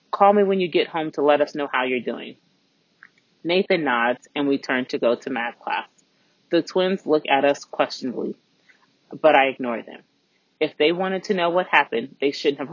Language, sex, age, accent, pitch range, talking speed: English, female, 30-49, American, 140-180 Hz, 205 wpm